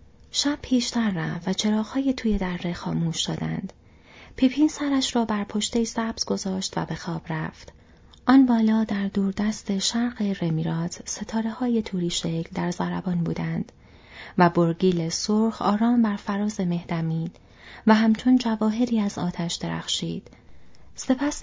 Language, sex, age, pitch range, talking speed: Persian, female, 30-49, 175-230 Hz, 135 wpm